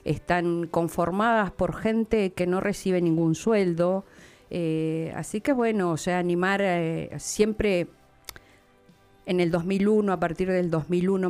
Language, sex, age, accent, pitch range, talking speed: Spanish, female, 50-69, Argentinian, 155-180 Hz, 135 wpm